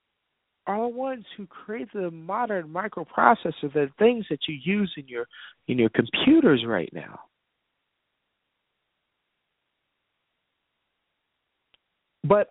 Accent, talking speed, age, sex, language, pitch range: American, 100 wpm, 50-69, male, English, 155-215 Hz